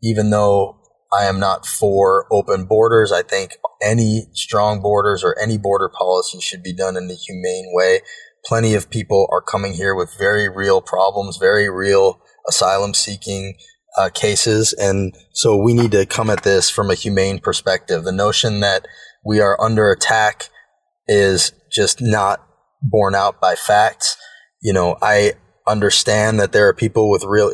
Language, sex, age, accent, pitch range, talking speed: English, male, 20-39, American, 95-110 Hz, 165 wpm